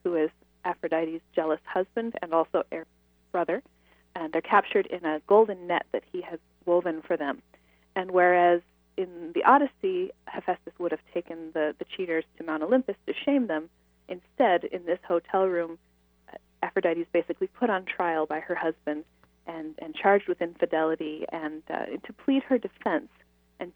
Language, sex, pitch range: English, female, 160-190 Hz